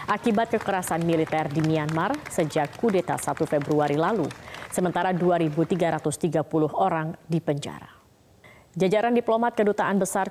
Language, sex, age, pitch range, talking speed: Indonesian, female, 30-49, 160-200 Hz, 105 wpm